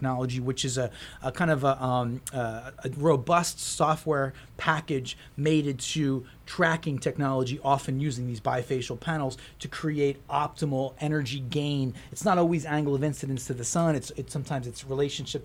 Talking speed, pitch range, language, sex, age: 160 wpm, 135-185 Hz, English, male, 30-49